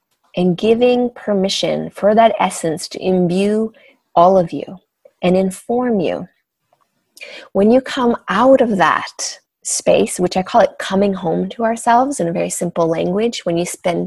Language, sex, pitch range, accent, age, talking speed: English, female, 180-235 Hz, American, 30-49, 160 wpm